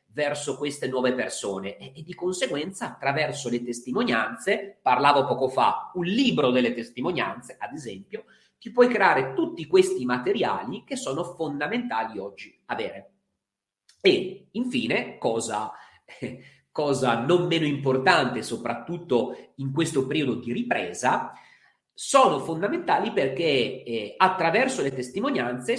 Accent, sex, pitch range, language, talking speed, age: native, male, 135-190 Hz, Italian, 115 wpm, 40-59